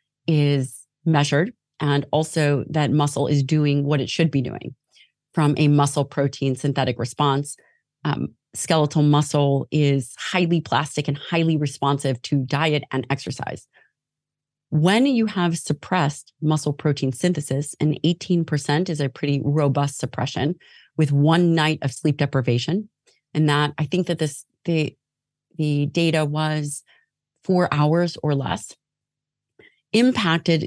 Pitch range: 140-160 Hz